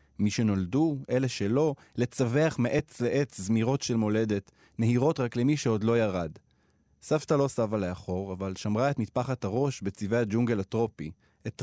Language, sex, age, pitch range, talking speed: Hebrew, male, 20-39, 105-155 Hz, 150 wpm